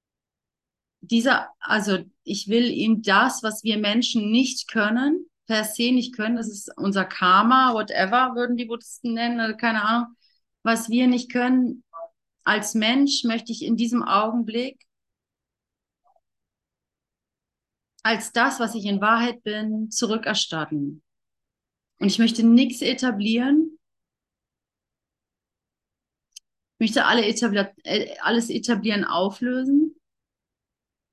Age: 30-49